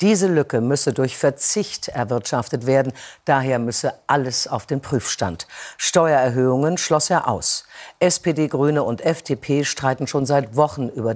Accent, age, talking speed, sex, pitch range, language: German, 50-69, 140 wpm, female, 125-160 Hz, German